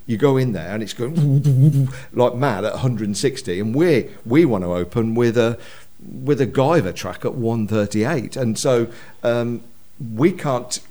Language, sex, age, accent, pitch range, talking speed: English, male, 50-69, British, 95-120 Hz, 165 wpm